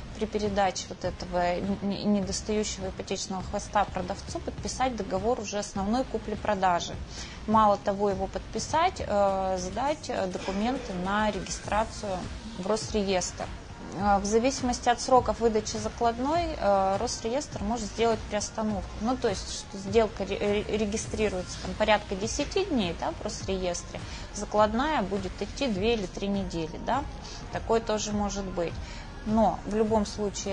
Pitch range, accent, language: 195-230 Hz, native, Russian